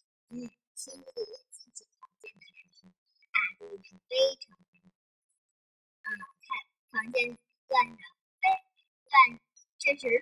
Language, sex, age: Chinese, male, 30-49